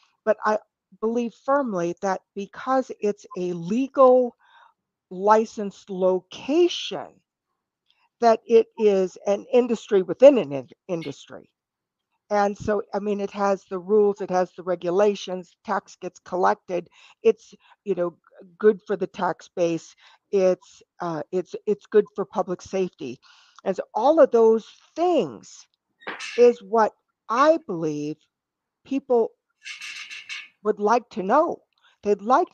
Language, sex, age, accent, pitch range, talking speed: English, female, 50-69, American, 180-230 Hz, 125 wpm